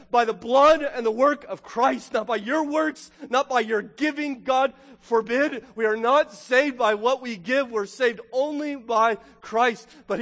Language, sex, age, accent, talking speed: English, male, 40-59, American, 190 wpm